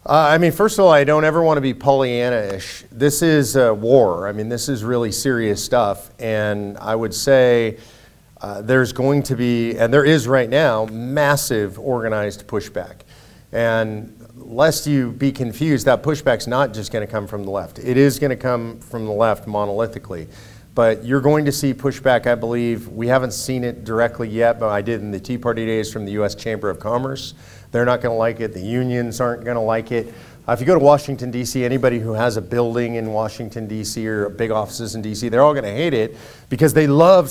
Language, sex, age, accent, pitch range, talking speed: English, male, 40-59, American, 110-135 Hz, 210 wpm